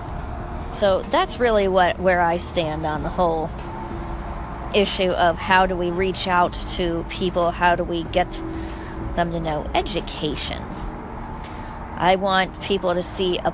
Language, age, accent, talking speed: English, 30-49, American, 145 wpm